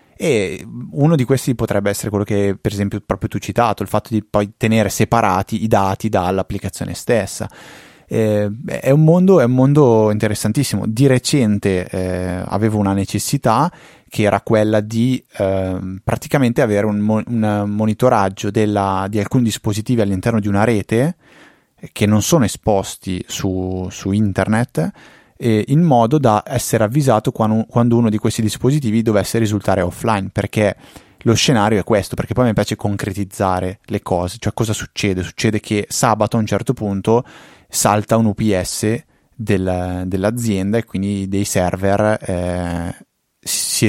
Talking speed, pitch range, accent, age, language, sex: 150 wpm, 100-115 Hz, native, 20-39, Italian, male